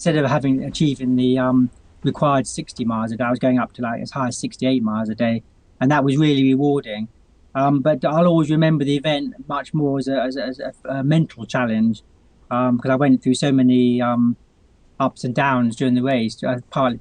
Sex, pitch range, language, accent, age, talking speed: male, 120-145 Hz, English, British, 30-49, 220 wpm